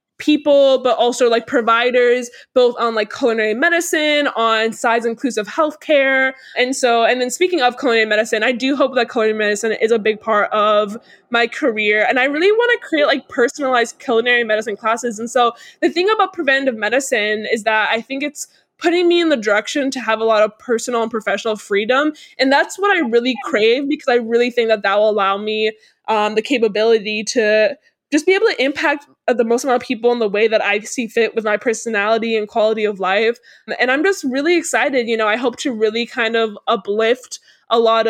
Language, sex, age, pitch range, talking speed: English, female, 10-29, 220-270 Hz, 205 wpm